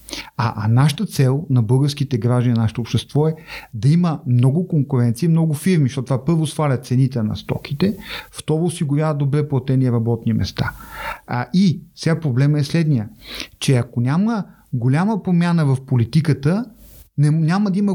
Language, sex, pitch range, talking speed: Bulgarian, male, 130-185 Hz, 155 wpm